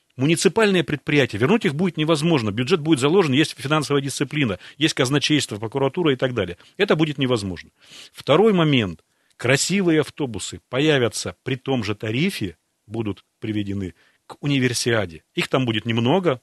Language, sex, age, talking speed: Russian, male, 40-59, 140 wpm